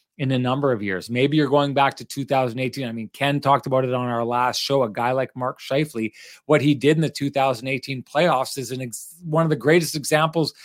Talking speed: 220 wpm